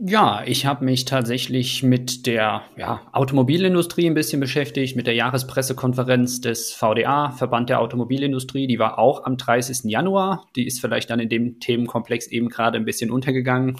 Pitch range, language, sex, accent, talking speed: 115-130 Hz, German, male, German, 160 wpm